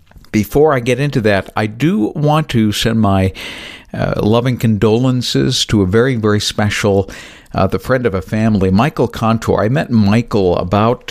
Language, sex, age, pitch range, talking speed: English, male, 60-79, 95-120 Hz, 165 wpm